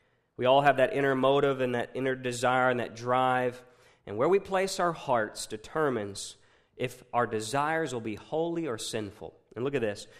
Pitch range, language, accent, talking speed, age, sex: 135-180 Hz, English, American, 190 wpm, 40-59, male